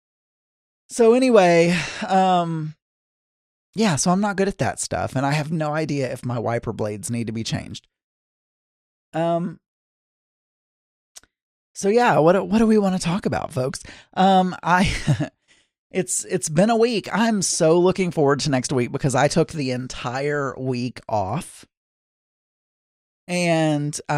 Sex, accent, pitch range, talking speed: male, American, 130-170 Hz, 145 wpm